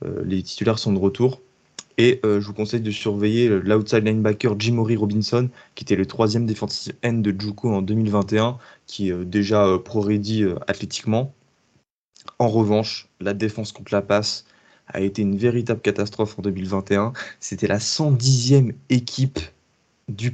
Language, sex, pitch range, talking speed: French, male, 100-115 Hz, 160 wpm